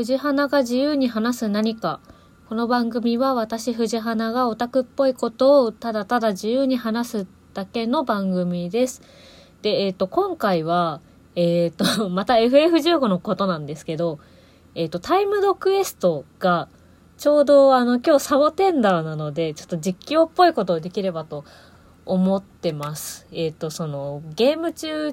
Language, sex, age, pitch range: Japanese, female, 20-39, 160-245 Hz